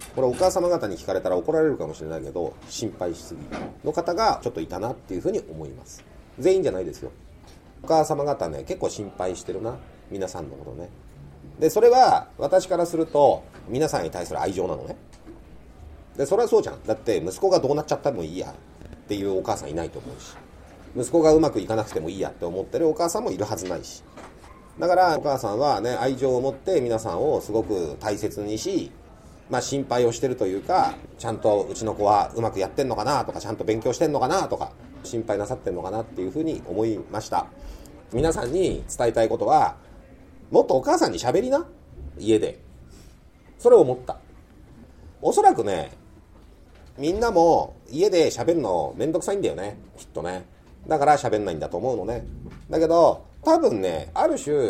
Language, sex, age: Japanese, male, 40-59